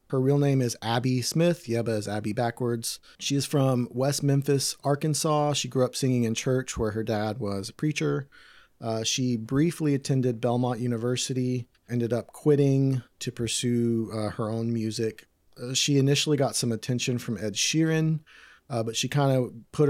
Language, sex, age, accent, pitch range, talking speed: English, male, 30-49, American, 110-130 Hz, 175 wpm